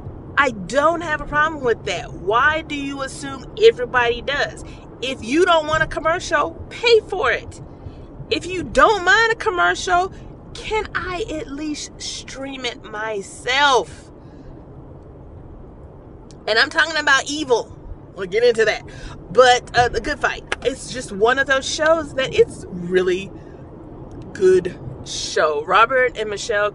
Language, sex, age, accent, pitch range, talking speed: English, female, 30-49, American, 205-330 Hz, 140 wpm